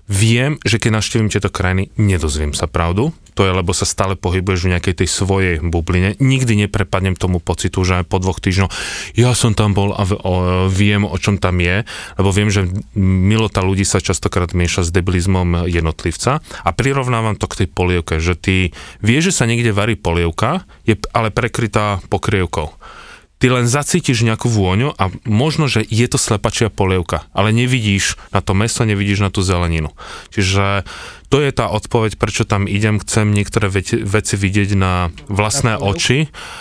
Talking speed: 170 wpm